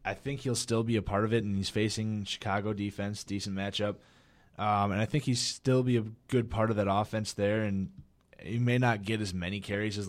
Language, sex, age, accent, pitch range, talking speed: English, male, 20-39, American, 95-110 Hz, 230 wpm